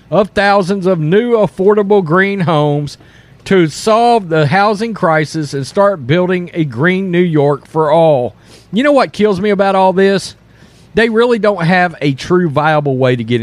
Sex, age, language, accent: male, 40-59, English, American